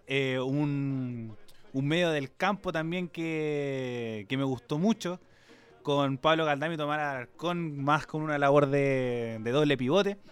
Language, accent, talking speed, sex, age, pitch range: Spanish, Argentinian, 145 wpm, male, 20-39, 130-160 Hz